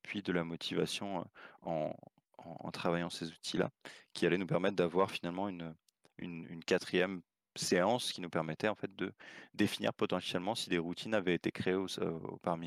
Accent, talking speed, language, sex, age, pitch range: French, 185 wpm, French, male, 20-39, 85-100 Hz